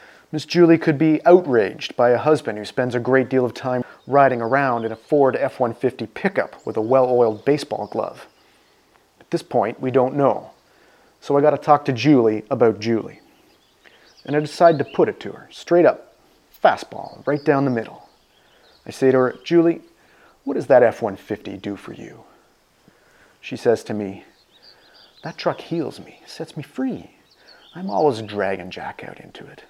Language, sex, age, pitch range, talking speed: English, male, 30-49, 120-155 Hz, 180 wpm